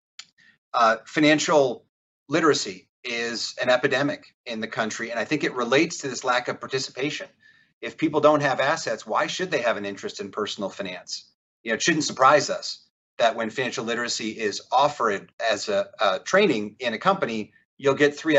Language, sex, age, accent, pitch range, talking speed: English, male, 40-59, American, 115-150 Hz, 180 wpm